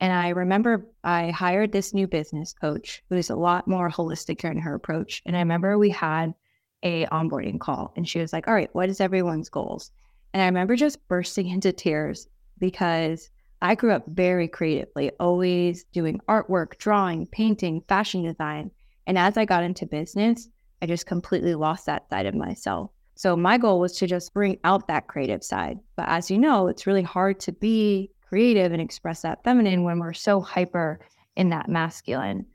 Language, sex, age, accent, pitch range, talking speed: English, female, 20-39, American, 170-205 Hz, 190 wpm